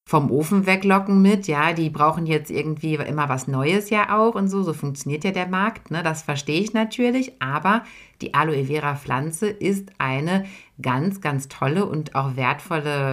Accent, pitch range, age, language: German, 135-190 Hz, 60-79, German